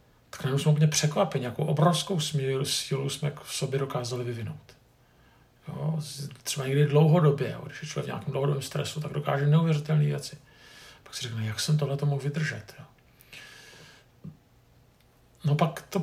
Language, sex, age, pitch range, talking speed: Czech, male, 50-69, 130-155 Hz, 155 wpm